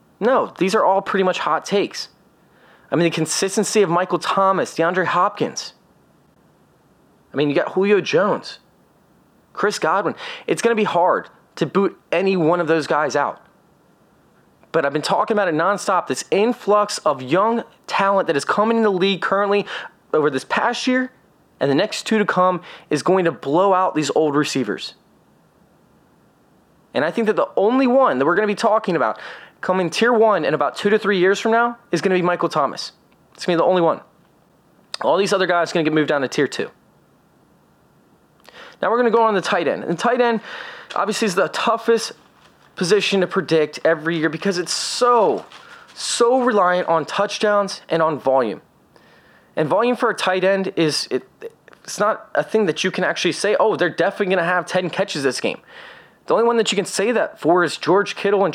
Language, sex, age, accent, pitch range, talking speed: English, male, 20-39, American, 175-220 Hz, 205 wpm